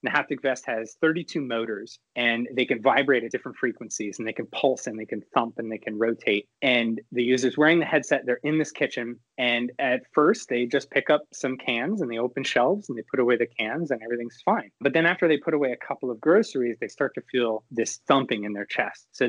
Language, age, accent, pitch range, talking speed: English, 20-39, American, 110-135 Hz, 240 wpm